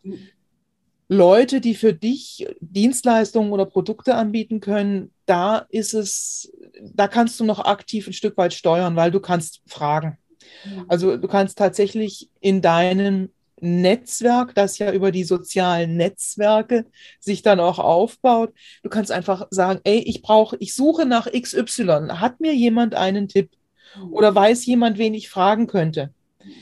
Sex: female